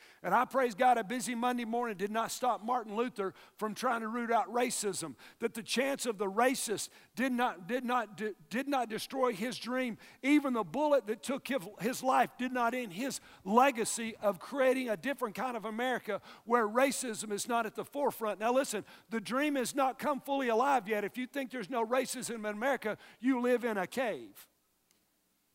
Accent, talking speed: American, 195 wpm